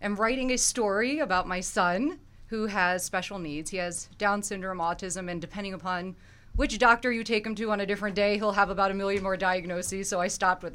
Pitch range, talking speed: 175-210 Hz, 225 wpm